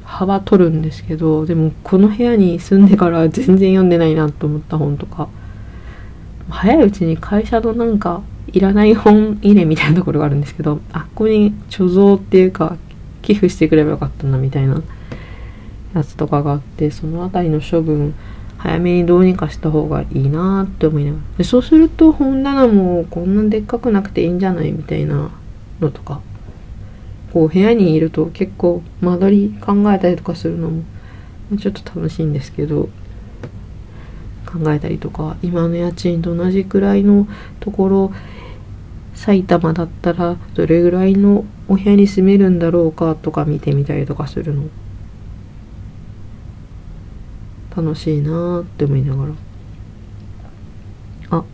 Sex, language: female, Japanese